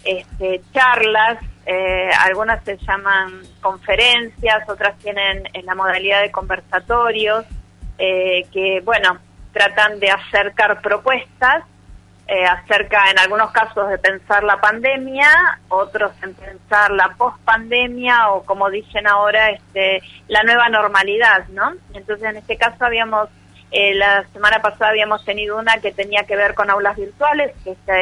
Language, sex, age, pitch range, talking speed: Spanish, female, 30-49, 195-215 Hz, 130 wpm